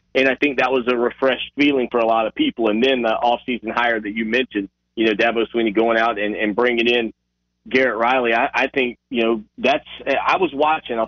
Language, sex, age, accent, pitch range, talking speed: English, male, 30-49, American, 115-135 Hz, 235 wpm